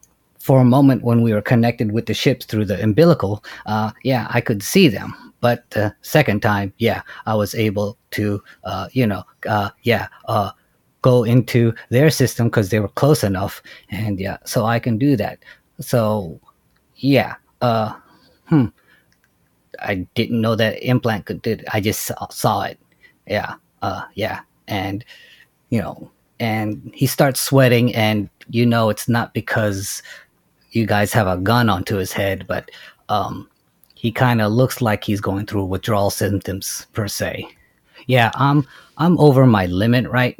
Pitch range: 100-120 Hz